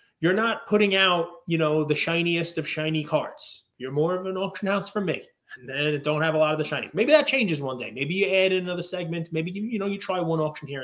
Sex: male